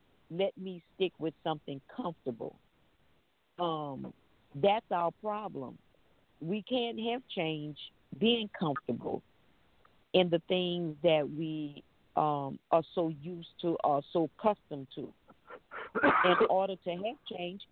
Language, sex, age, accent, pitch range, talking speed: English, female, 50-69, American, 165-200 Hz, 120 wpm